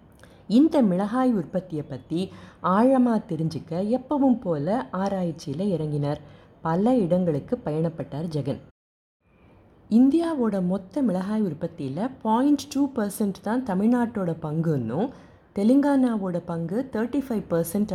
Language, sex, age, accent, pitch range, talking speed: Tamil, female, 20-39, native, 165-230 Hz, 85 wpm